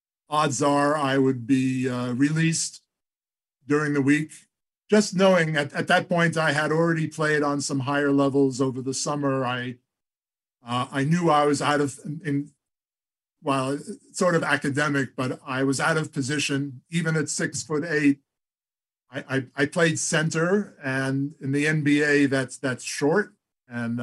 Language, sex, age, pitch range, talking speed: English, male, 50-69, 130-155 Hz, 160 wpm